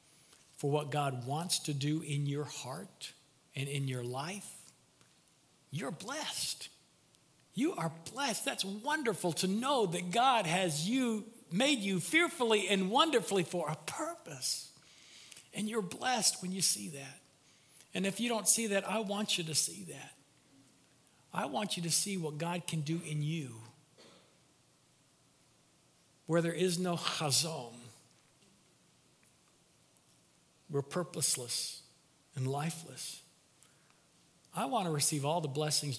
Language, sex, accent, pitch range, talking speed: English, male, American, 140-185 Hz, 135 wpm